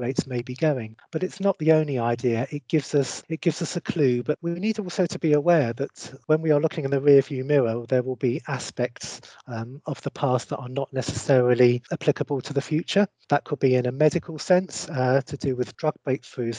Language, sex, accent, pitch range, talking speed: English, male, British, 130-155 Hz, 230 wpm